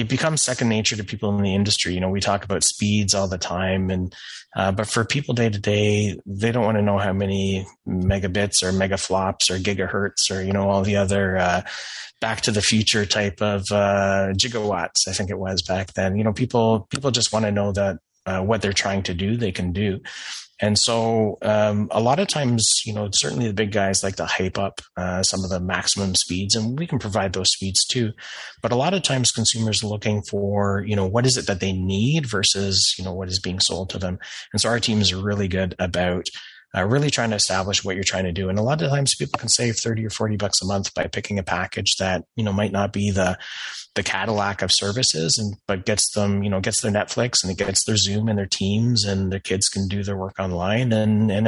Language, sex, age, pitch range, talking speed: English, male, 30-49, 95-110 Hz, 240 wpm